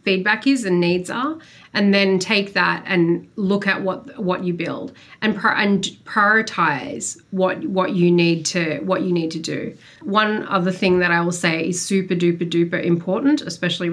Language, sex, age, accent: English, female, 30-49, Australian